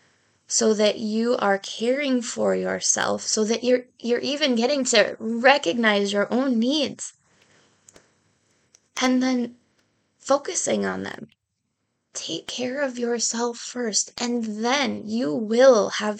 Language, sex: English, female